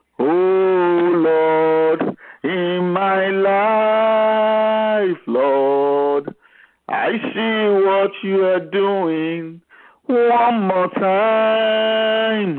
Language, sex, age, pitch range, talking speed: English, male, 50-69, 165-220 Hz, 70 wpm